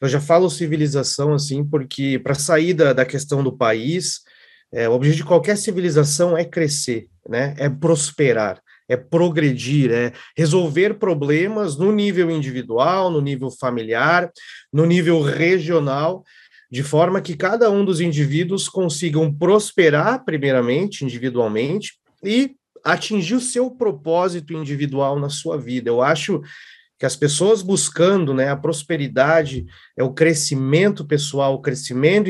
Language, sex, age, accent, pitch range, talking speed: Portuguese, male, 30-49, Brazilian, 140-180 Hz, 135 wpm